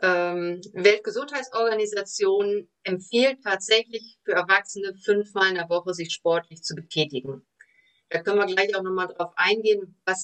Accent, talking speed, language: German, 130 wpm, German